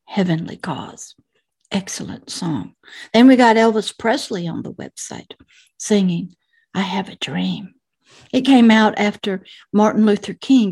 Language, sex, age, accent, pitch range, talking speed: English, female, 60-79, American, 195-235 Hz, 135 wpm